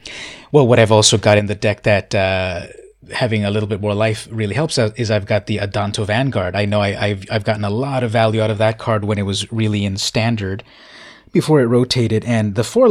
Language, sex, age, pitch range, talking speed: English, male, 30-49, 100-115 Hz, 235 wpm